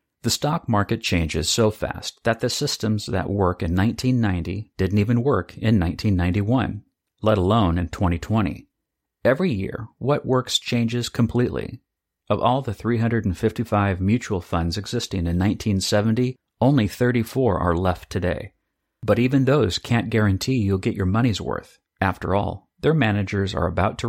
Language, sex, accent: English, male, American